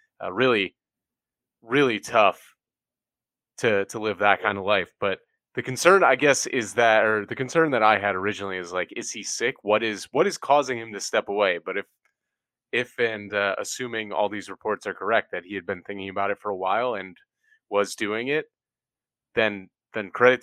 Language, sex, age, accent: English, male, 30-49, American